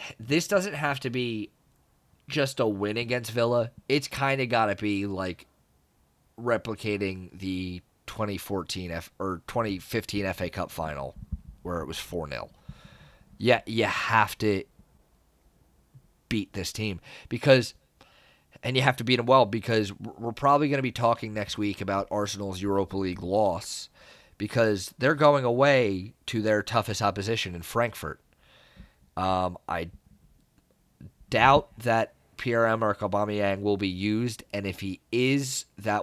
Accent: American